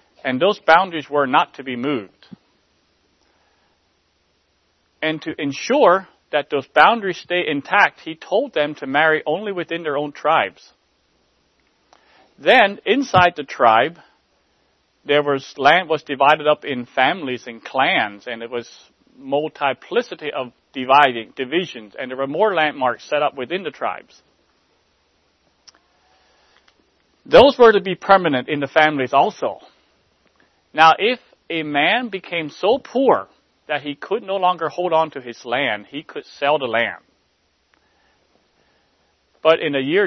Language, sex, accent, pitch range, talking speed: English, male, American, 120-160 Hz, 140 wpm